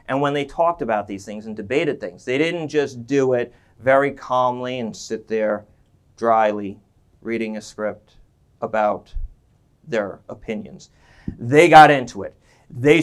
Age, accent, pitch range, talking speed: 40-59, American, 115-150 Hz, 145 wpm